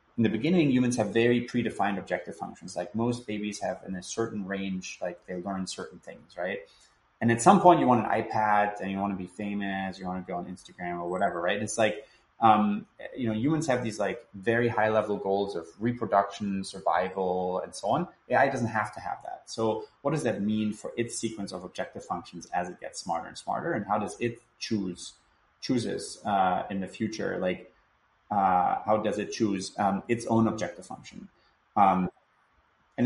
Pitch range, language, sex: 95-115 Hz, English, male